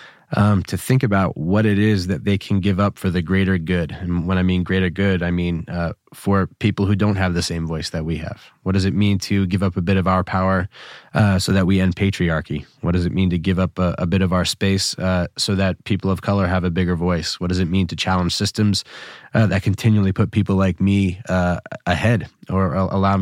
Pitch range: 90-100 Hz